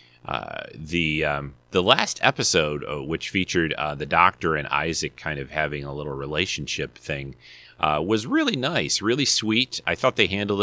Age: 30-49